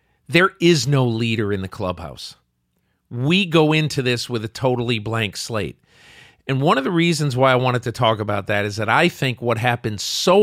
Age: 40-59